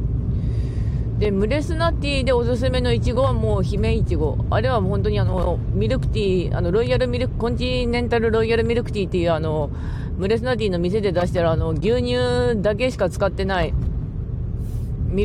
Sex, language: female, Japanese